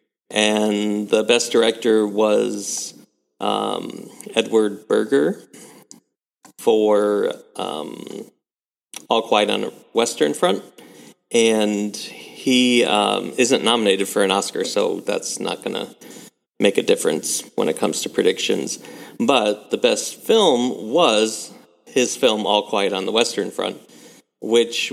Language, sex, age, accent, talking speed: English, male, 40-59, American, 125 wpm